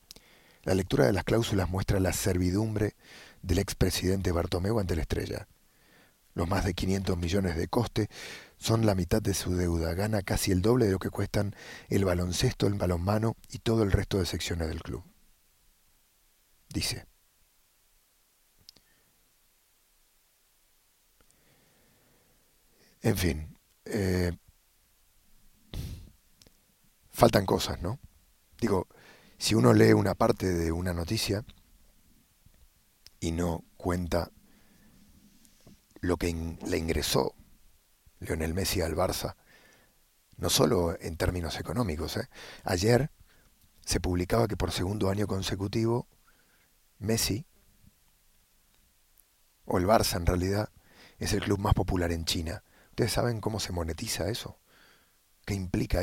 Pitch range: 85-105 Hz